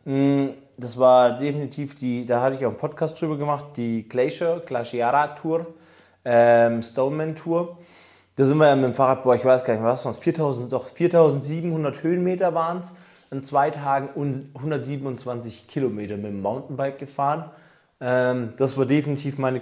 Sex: male